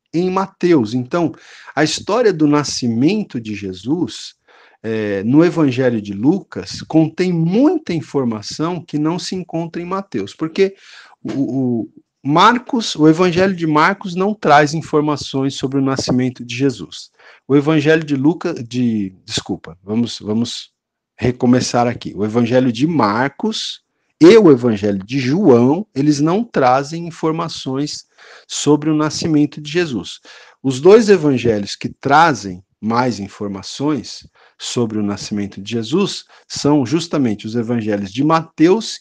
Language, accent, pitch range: Portuguese, Brazilian, 120-180 Hz